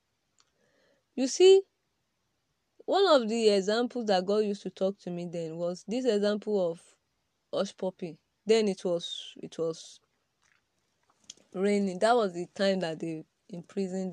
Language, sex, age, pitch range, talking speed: English, female, 20-39, 180-245 Hz, 140 wpm